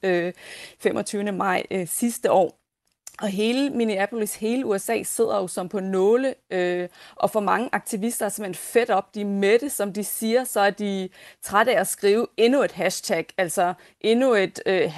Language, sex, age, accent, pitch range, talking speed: Danish, female, 30-49, native, 180-215 Hz, 175 wpm